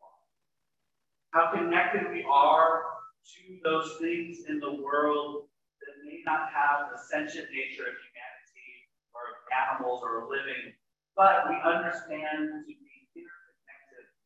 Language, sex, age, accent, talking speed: English, male, 30-49, American, 125 wpm